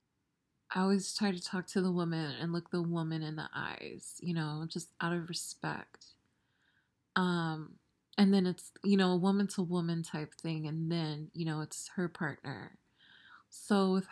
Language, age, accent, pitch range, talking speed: English, 20-39, American, 170-210 Hz, 170 wpm